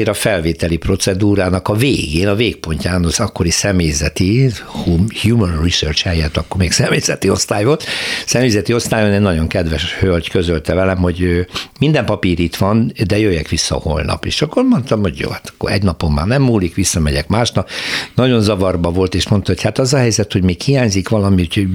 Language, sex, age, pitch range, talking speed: Hungarian, male, 60-79, 85-115 Hz, 175 wpm